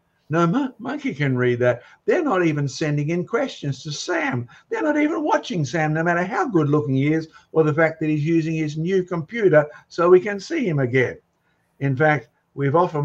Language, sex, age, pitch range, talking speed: English, male, 60-79, 130-165 Hz, 200 wpm